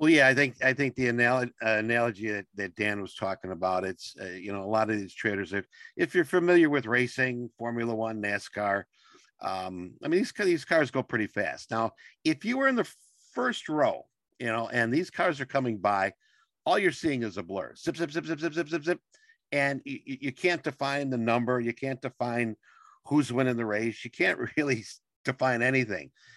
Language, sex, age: English, male, 50-69